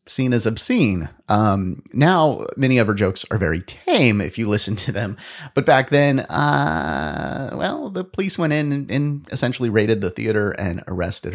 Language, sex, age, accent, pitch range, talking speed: English, male, 30-49, American, 95-140 Hz, 180 wpm